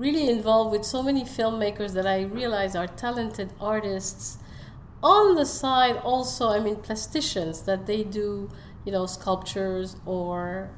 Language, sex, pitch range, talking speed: English, female, 180-220 Hz, 145 wpm